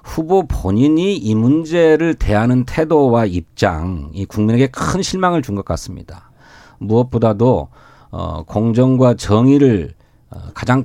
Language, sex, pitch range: Korean, male, 105-145 Hz